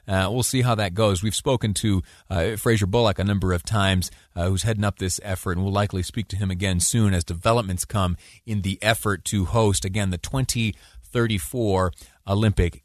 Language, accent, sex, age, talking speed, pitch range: English, American, male, 30-49, 195 wpm, 95-125 Hz